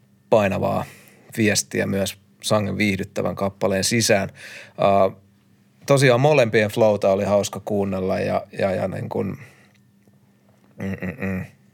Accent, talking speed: native, 95 wpm